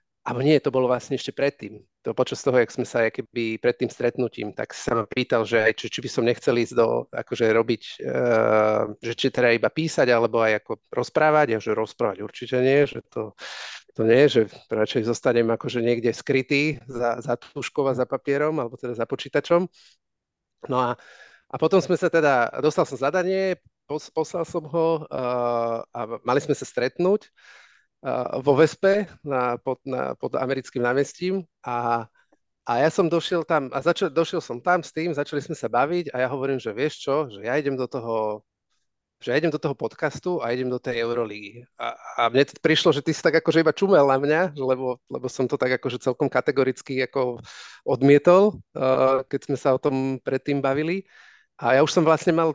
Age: 40-59